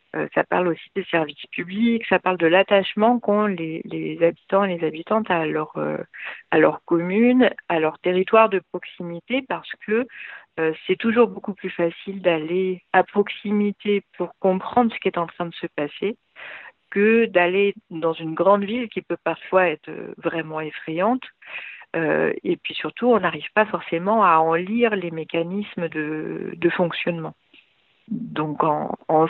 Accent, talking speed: French, 155 wpm